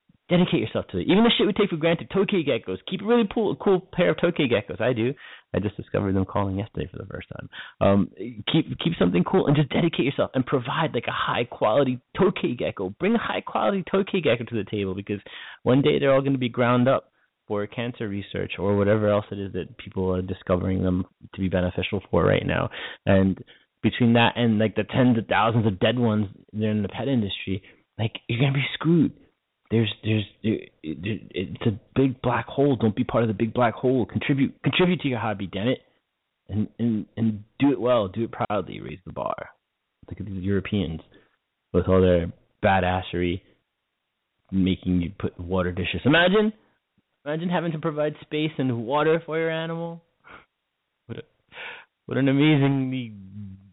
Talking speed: 195 wpm